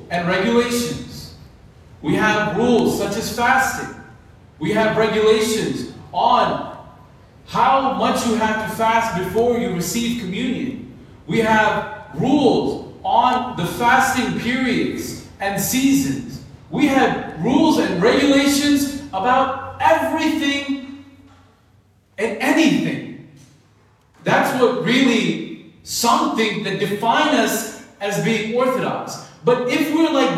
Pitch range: 215-275 Hz